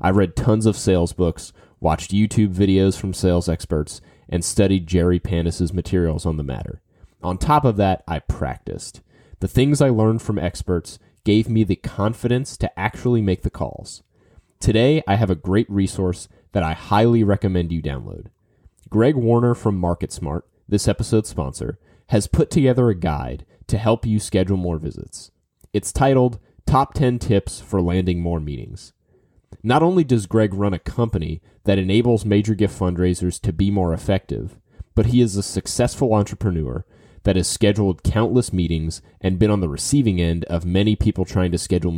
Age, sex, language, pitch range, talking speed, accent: 30-49, male, English, 85-110 Hz, 170 wpm, American